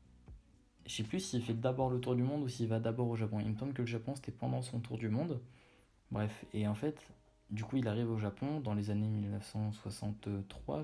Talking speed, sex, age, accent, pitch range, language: 235 wpm, male, 20-39, French, 105-120 Hz, French